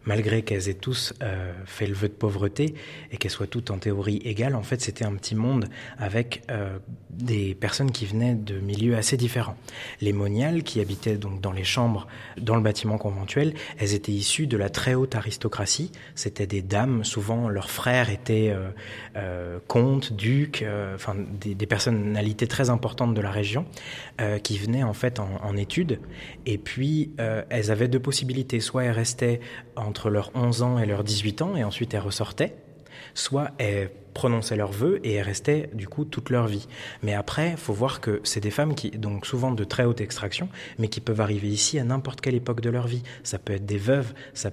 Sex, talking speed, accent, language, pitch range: male, 200 wpm, French, French, 105-125 Hz